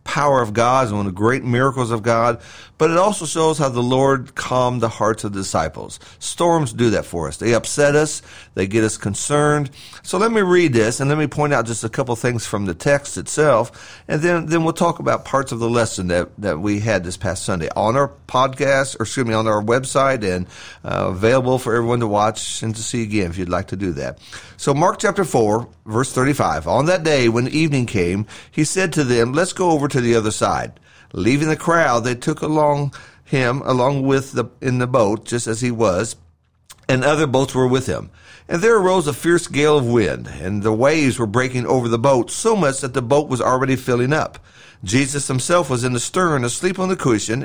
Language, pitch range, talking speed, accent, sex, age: English, 110-150 Hz, 225 wpm, American, male, 50-69